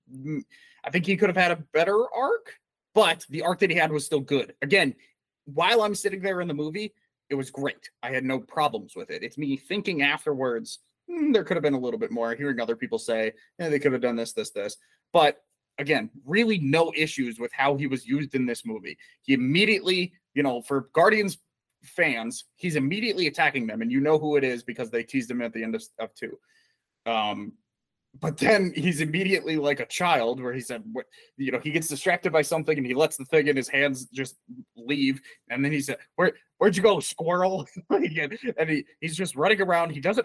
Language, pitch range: English, 135-205 Hz